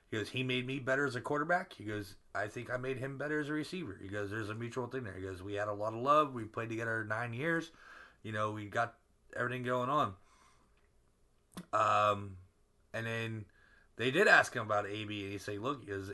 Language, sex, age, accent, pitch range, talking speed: English, male, 30-49, American, 100-125 Hz, 230 wpm